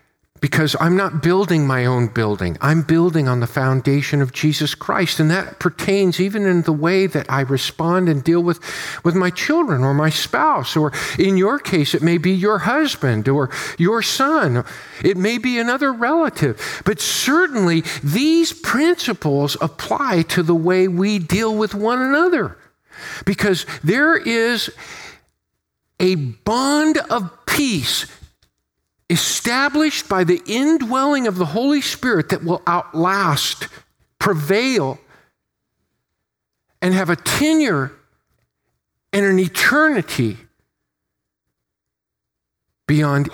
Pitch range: 130-195 Hz